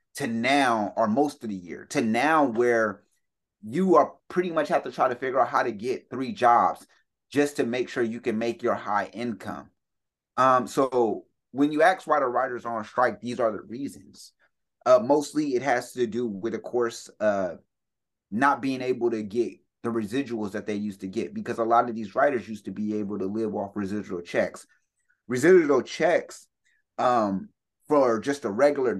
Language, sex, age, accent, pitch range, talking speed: English, male, 30-49, American, 110-140 Hz, 195 wpm